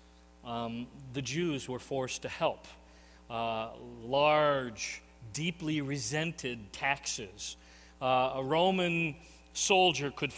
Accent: American